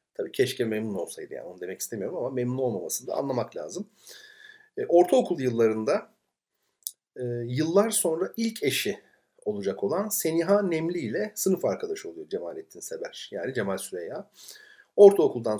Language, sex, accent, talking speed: Turkish, male, native, 140 wpm